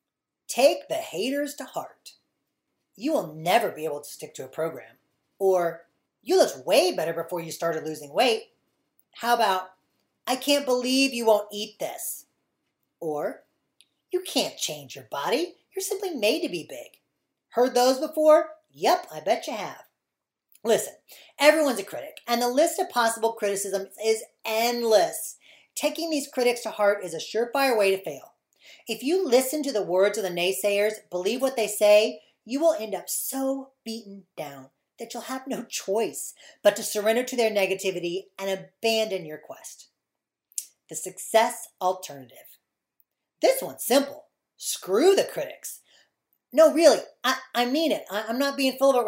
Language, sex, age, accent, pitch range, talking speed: English, female, 40-59, American, 205-295 Hz, 165 wpm